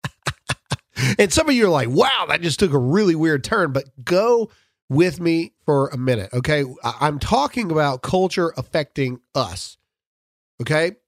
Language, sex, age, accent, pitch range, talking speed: English, male, 40-59, American, 125-170 Hz, 155 wpm